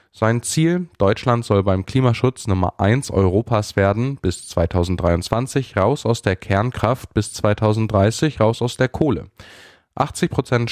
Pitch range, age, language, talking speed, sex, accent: 100-125 Hz, 10-29, German, 130 wpm, male, German